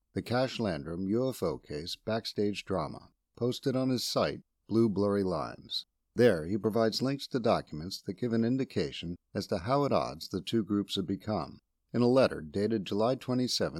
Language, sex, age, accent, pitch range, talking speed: English, male, 50-69, American, 90-125 Hz, 175 wpm